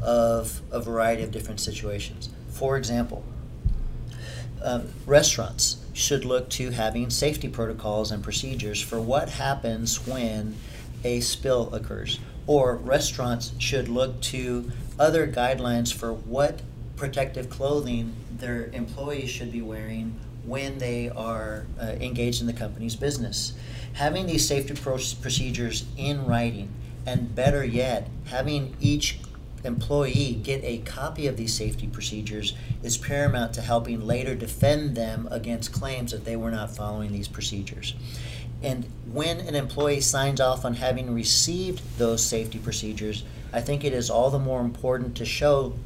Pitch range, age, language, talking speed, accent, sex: 115-130 Hz, 40-59, English, 140 wpm, American, male